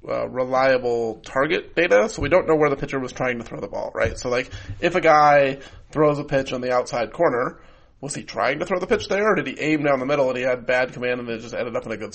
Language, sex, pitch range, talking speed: English, male, 120-140 Hz, 285 wpm